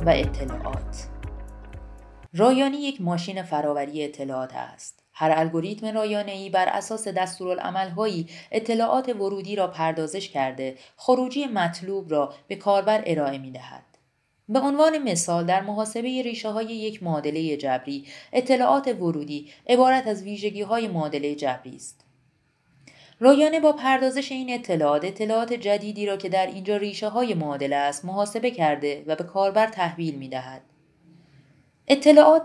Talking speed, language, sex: 130 wpm, Persian, female